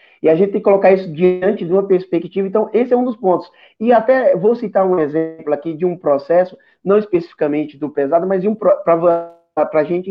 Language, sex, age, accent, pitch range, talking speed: Portuguese, male, 20-39, Brazilian, 155-200 Hz, 215 wpm